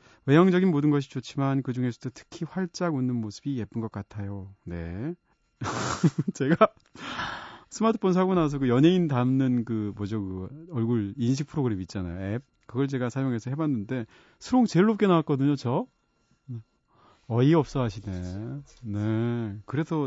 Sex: male